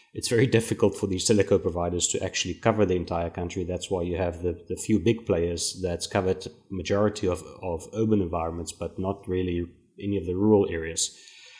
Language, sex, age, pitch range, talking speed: English, male, 30-49, 90-110 Hz, 190 wpm